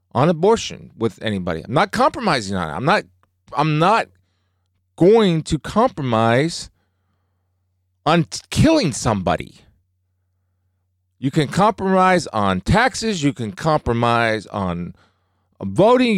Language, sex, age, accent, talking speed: English, male, 40-59, American, 110 wpm